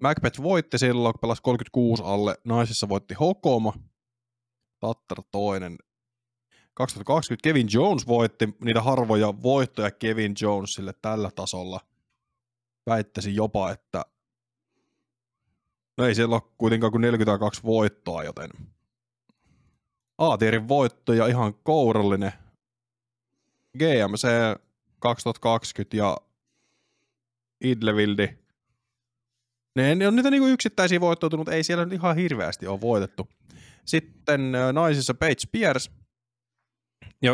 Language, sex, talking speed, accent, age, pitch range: Finnish, male, 100 wpm, native, 20-39, 110-130 Hz